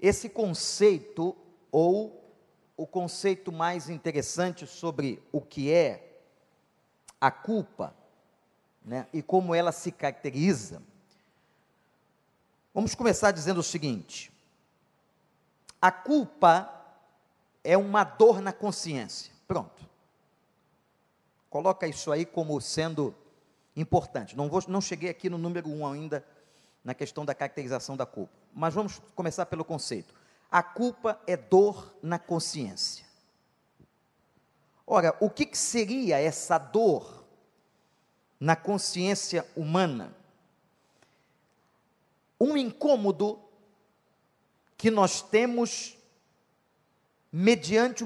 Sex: male